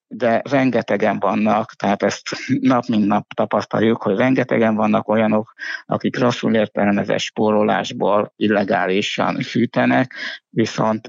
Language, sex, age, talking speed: Hungarian, male, 60-79, 110 wpm